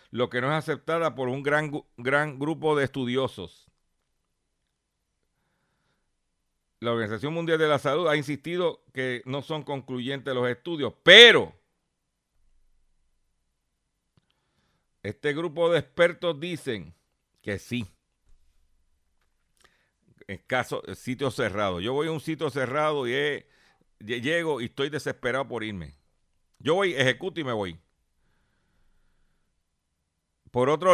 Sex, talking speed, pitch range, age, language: male, 115 wpm, 95-150 Hz, 60-79, Spanish